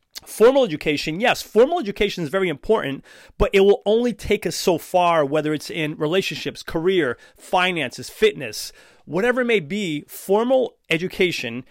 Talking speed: 150 wpm